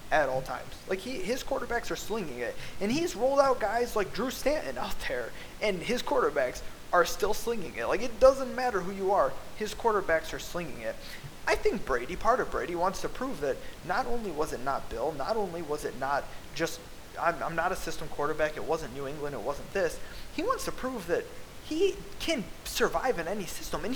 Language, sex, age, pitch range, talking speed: English, male, 20-39, 160-235 Hz, 215 wpm